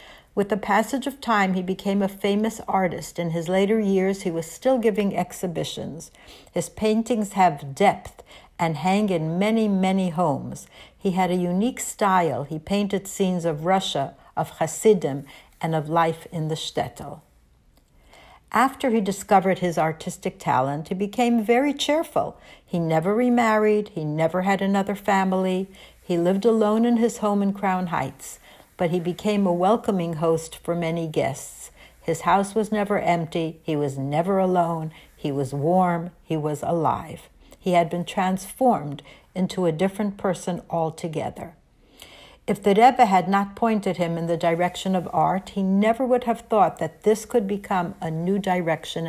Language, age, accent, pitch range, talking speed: English, 60-79, American, 170-215 Hz, 160 wpm